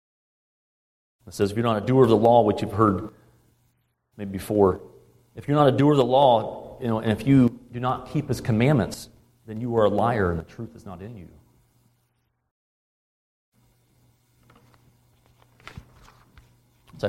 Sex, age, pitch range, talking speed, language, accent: male, 30-49, 95-120 Hz, 160 wpm, English, American